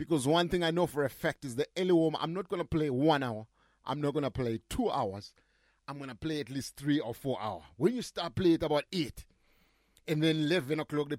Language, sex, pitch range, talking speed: English, male, 145-205 Hz, 235 wpm